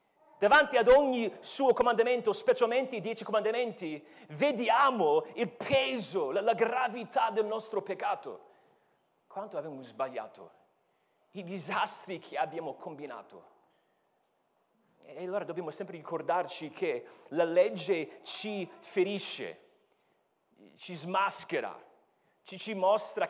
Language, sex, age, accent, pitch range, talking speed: Italian, male, 40-59, native, 180-250 Hz, 105 wpm